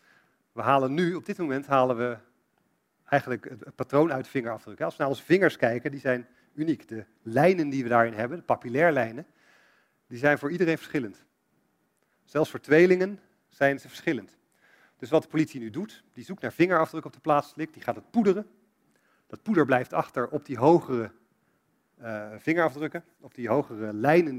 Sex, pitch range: male, 120-160 Hz